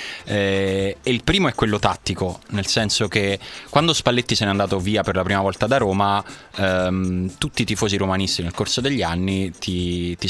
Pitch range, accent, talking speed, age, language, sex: 90-110 Hz, native, 190 wpm, 20-39, Italian, male